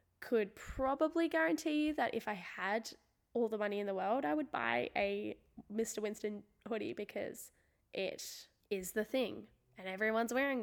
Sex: female